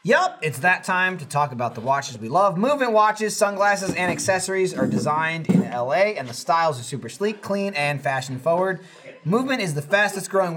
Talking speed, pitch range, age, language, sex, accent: 200 wpm, 130-195 Hz, 30-49, English, male, American